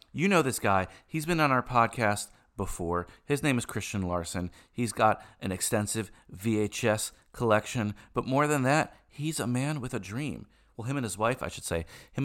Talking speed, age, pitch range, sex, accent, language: 195 wpm, 30-49, 100-130 Hz, male, American, English